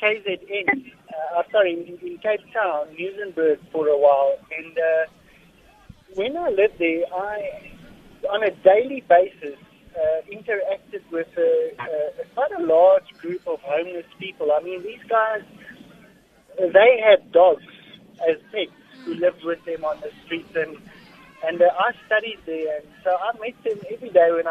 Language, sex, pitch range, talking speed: English, male, 165-210 Hz, 150 wpm